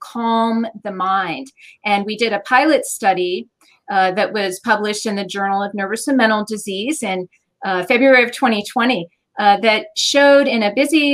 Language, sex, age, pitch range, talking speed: English, female, 40-59, 205-265 Hz, 170 wpm